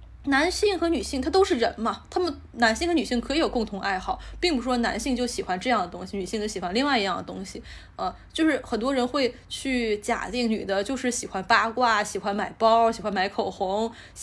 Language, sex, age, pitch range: Chinese, female, 20-39, 200-250 Hz